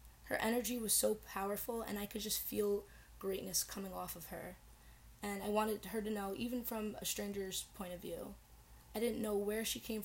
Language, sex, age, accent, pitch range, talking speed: English, female, 10-29, American, 180-215 Hz, 205 wpm